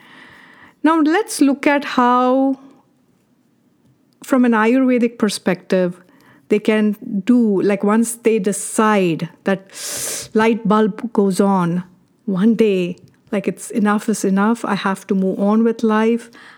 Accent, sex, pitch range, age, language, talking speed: Indian, female, 195-235 Hz, 50-69, English, 125 wpm